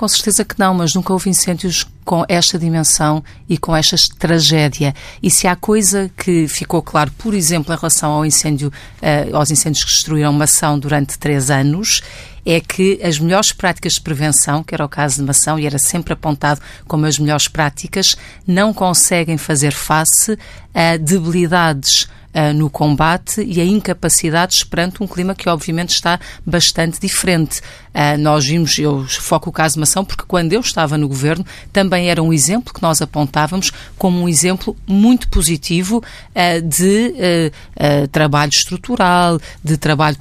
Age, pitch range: 40-59, 150-185 Hz